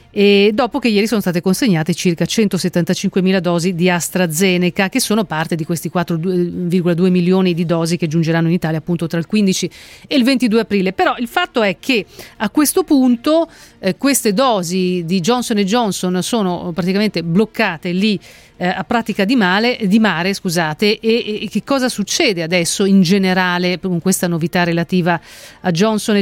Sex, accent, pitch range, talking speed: female, native, 175-220 Hz, 165 wpm